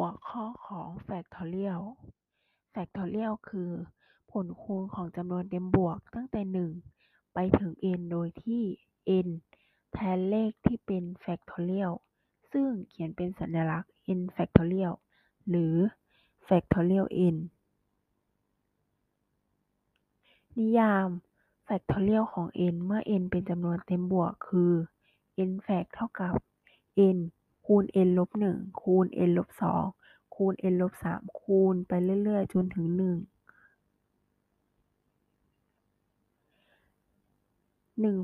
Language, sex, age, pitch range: Thai, female, 20-39, 175-200 Hz